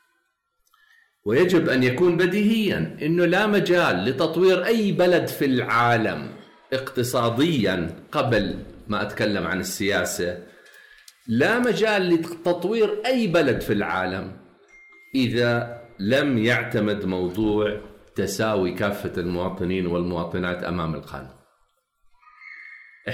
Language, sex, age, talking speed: Arabic, male, 50-69, 90 wpm